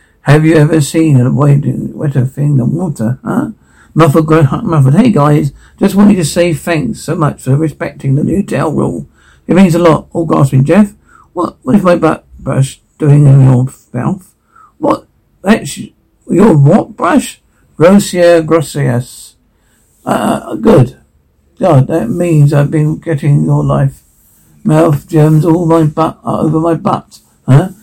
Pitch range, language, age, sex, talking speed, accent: 130-165 Hz, English, 60-79, male, 155 wpm, British